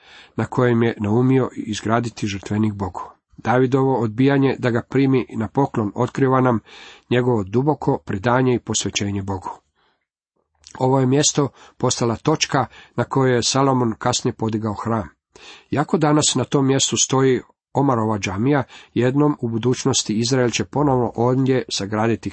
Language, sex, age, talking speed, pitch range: Croatian, male, 40-59, 135 wpm, 110-135 Hz